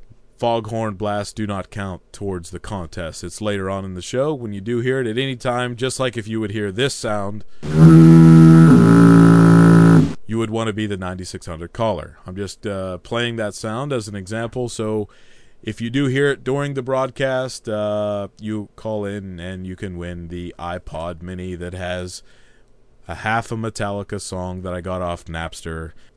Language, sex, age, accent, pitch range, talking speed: English, male, 30-49, American, 95-125 Hz, 180 wpm